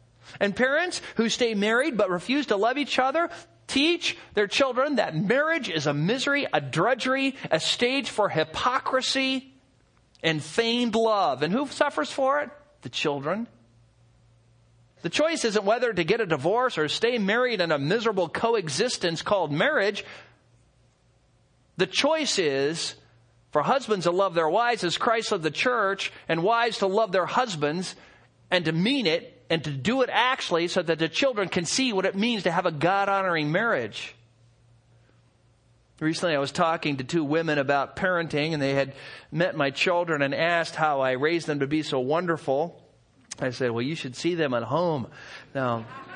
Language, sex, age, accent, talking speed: English, male, 40-59, American, 170 wpm